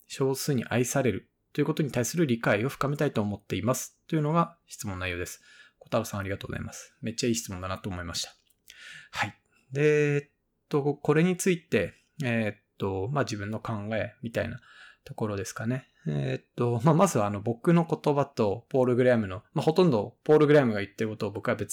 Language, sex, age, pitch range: Japanese, male, 20-39, 110-150 Hz